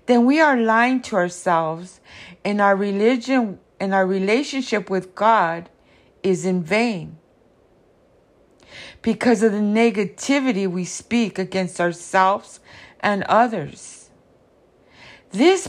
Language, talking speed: English, 105 wpm